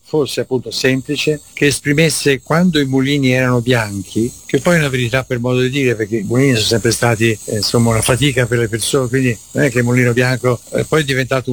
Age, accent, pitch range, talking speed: 60-79, native, 120-145 Hz, 220 wpm